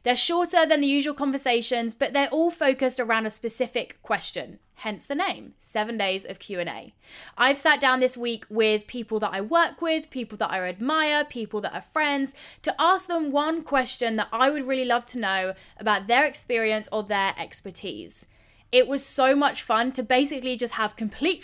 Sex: female